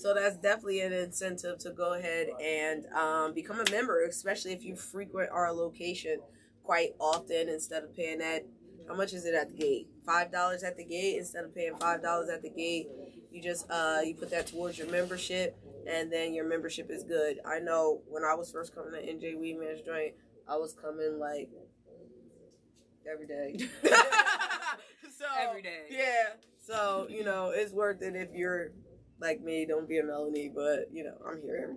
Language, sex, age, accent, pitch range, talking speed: English, female, 20-39, American, 160-195 Hz, 185 wpm